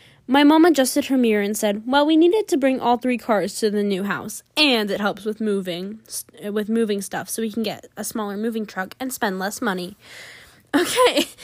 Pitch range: 200-280 Hz